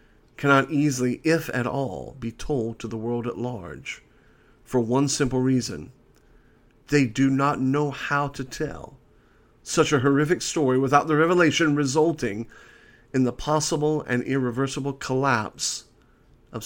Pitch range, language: 125-155 Hz, English